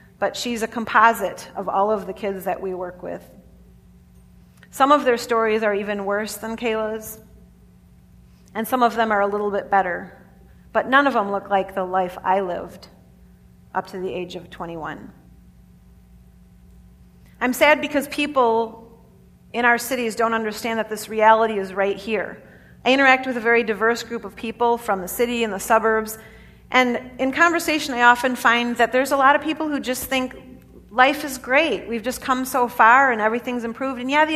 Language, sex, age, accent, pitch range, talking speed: English, female, 40-59, American, 190-260 Hz, 185 wpm